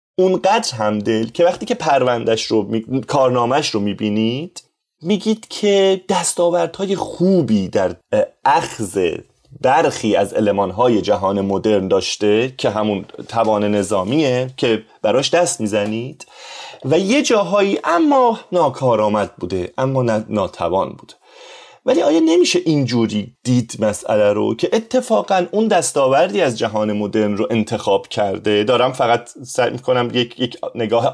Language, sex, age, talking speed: Persian, male, 30-49, 120 wpm